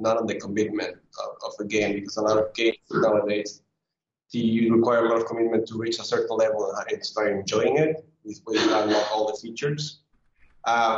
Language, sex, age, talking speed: English, male, 20-39, 185 wpm